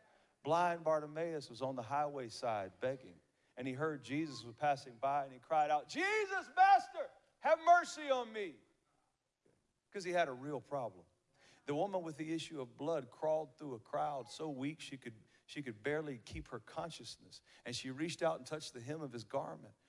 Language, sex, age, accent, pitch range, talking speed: English, male, 40-59, American, 125-160 Hz, 185 wpm